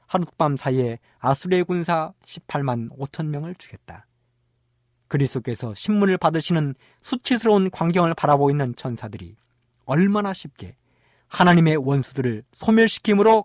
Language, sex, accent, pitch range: Korean, male, native, 120-180 Hz